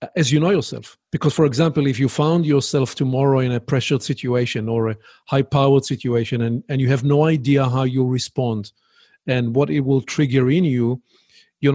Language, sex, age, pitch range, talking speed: English, male, 40-59, 125-155 Hz, 195 wpm